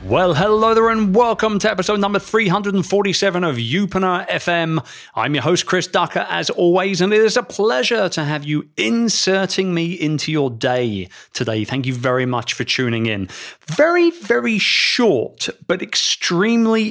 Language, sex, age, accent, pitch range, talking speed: English, male, 30-49, British, 115-175 Hz, 160 wpm